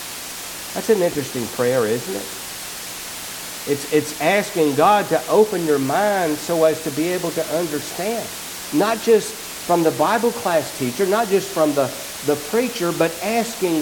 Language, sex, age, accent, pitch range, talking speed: English, male, 60-79, American, 145-205 Hz, 155 wpm